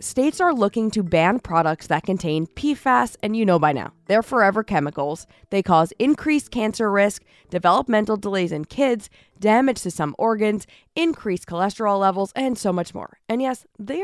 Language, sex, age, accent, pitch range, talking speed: English, female, 20-39, American, 175-255 Hz, 170 wpm